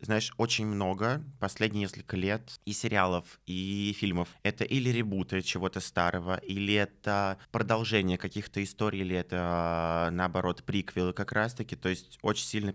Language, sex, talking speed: Russian, male, 140 wpm